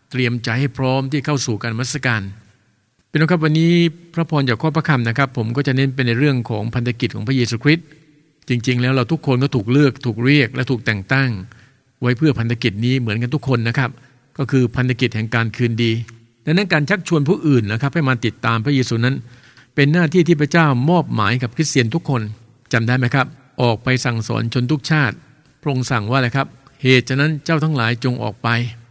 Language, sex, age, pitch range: English, male, 60-79, 120-145 Hz